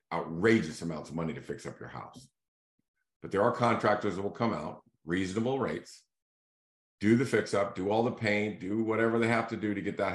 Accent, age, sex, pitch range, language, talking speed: American, 50-69, male, 85-105 Hz, English, 215 wpm